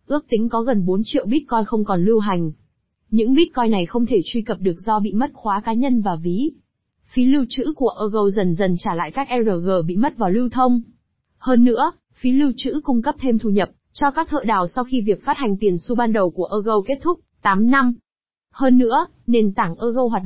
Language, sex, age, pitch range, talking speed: Vietnamese, female, 20-39, 200-260 Hz, 230 wpm